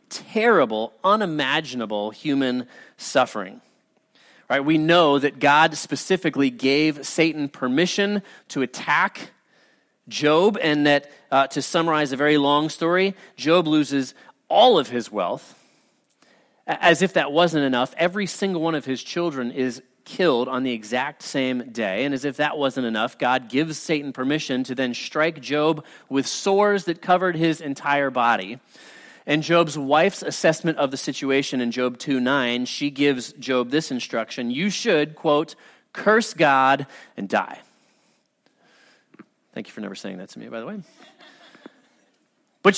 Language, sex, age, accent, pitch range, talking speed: English, male, 30-49, American, 130-170 Hz, 145 wpm